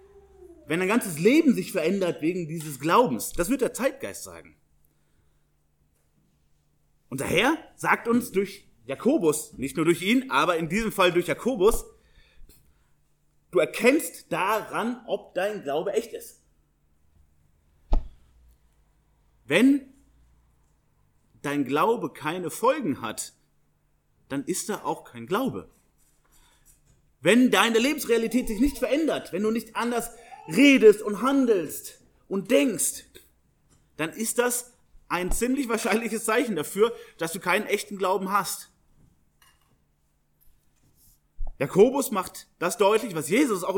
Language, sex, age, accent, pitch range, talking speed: German, male, 30-49, German, 150-235 Hz, 120 wpm